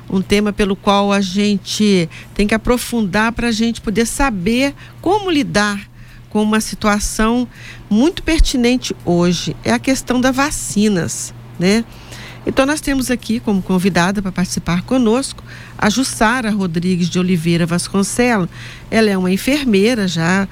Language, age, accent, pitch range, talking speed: Portuguese, 50-69, Brazilian, 185-235 Hz, 140 wpm